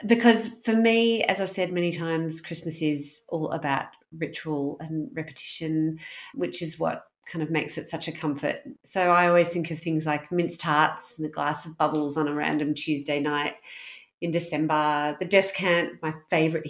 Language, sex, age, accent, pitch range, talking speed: English, female, 40-59, Australian, 155-185 Hz, 180 wpm